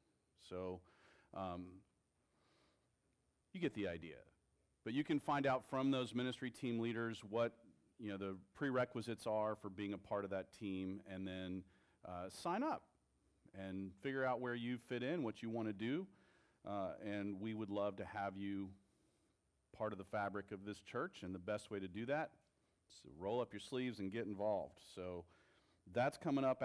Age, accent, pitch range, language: 40-59, American, 95-125 Hz, English